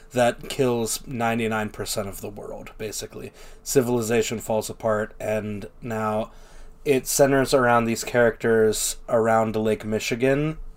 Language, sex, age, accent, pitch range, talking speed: English, male, 20-39, American, 110-140 Hz, 110 wpm